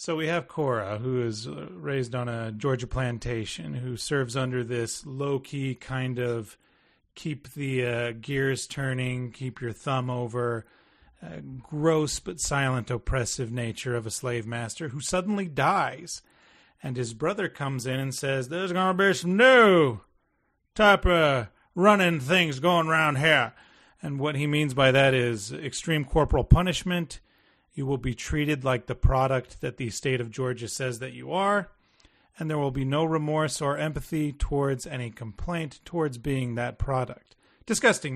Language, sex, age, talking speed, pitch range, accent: English, male, 30-49, 150 wpm, 125-155 Hz, American